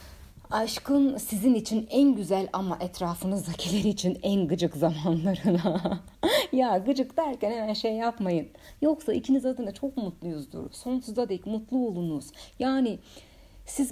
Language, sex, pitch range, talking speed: Turkish, female, 170-220 Hz, 120 wpm